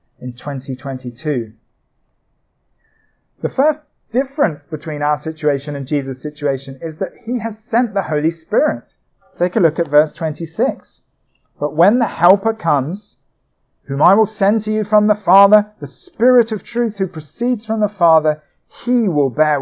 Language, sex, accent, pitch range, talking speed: English, male, British, 145-190 Hz, 155 wpm